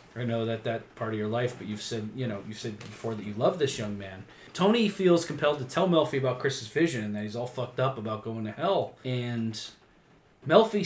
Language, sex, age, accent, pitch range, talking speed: English, male, 30-49, American, 115-165 Hz, 240 wpm